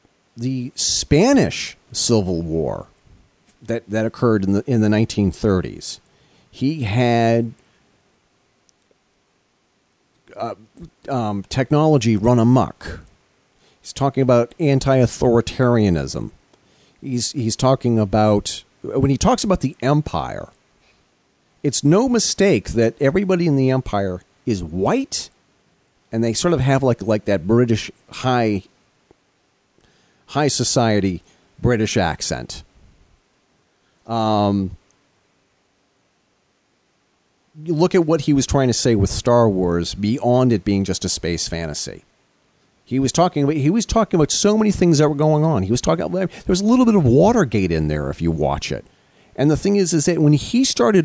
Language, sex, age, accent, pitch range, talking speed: English, male, 40-59, American, 105-150 Hz, 140 wpm